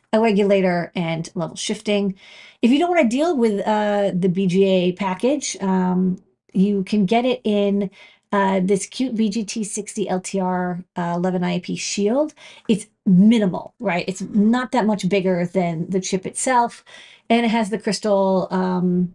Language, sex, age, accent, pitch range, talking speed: English, female, 40-59, American, 185-215 Hz, 150 wpm